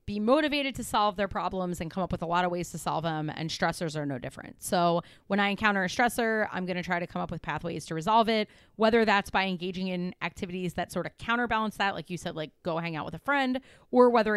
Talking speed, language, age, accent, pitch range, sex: 265 wpm, English, 30-49, American, 175-220 Hz, female